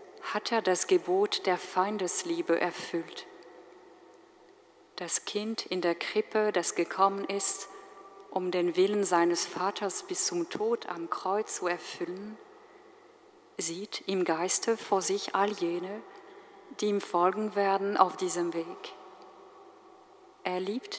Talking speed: 125 wpm